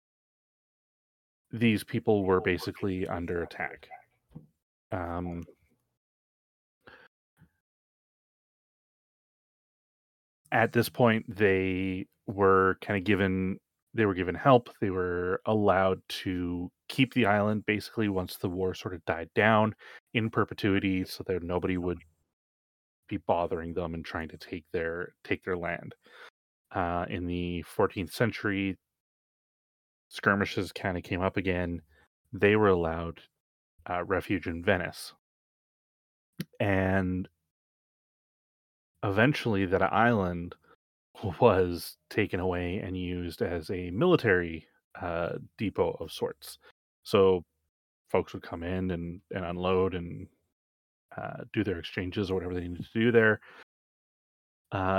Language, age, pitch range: English, 30-49, 85-105 Hz